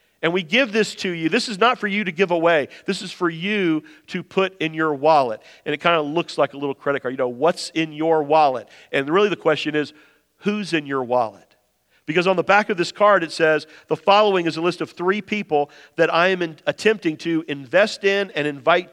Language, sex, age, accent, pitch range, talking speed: English, male, 40-59, American, 145-195 Hz, 235 wpm